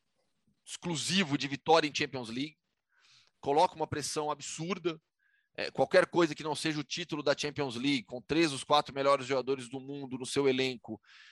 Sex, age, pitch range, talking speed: male, 20-39, 125-160 Hz, 165 wpm